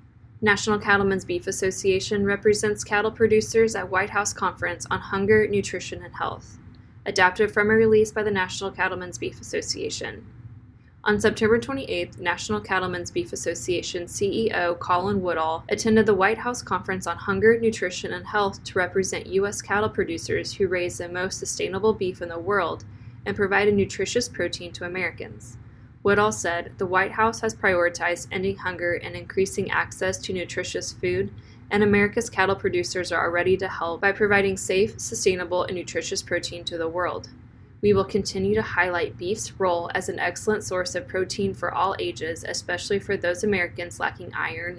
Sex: female